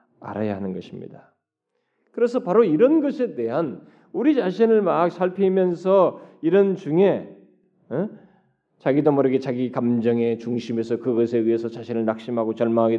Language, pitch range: Korean, 115-190 Hz